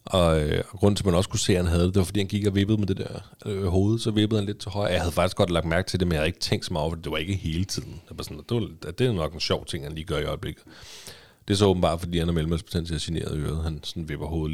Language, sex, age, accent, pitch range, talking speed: Danish, male, 30-49, native, 80-105 Hz, 345 wpm